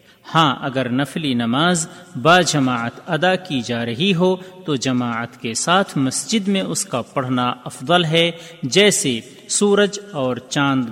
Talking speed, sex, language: 145 wpm, male, Urdu